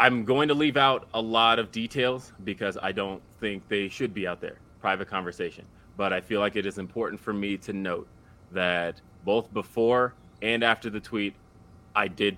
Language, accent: English, American